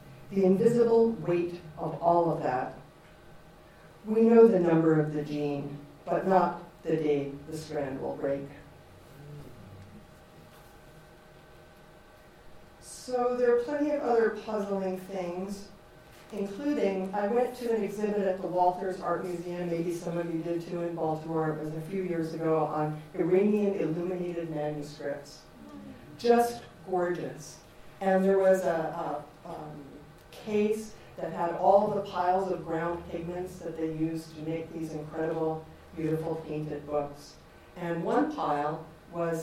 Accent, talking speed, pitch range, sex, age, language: American, 135 wpm, 155-195 Hz, female, 50-69, English